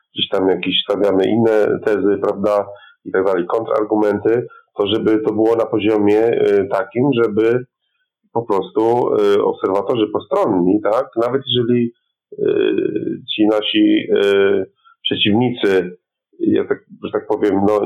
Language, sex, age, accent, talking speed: Polish, male, 40-59, native, 130 wpm